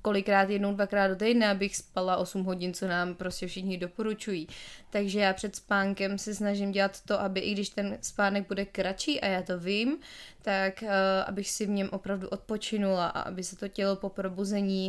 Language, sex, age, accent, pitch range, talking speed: Czech, female, 20-39, native, 195-210 Hz, 190 wpm